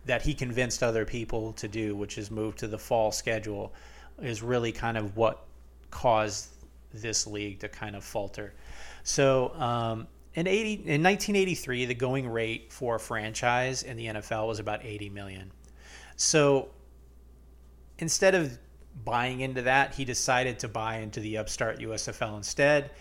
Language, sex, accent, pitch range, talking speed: English, male, American, 105-130 Hz, 155 wpm